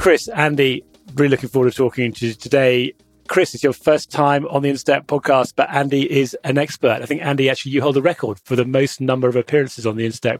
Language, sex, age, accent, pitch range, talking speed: English, male, 30-49, British, 115-140 Hz, 235 wpm